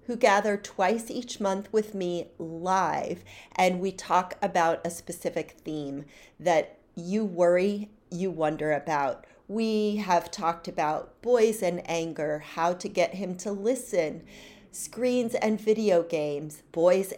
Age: 40-59